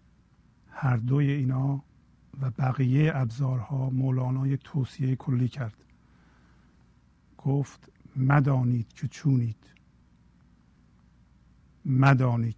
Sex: male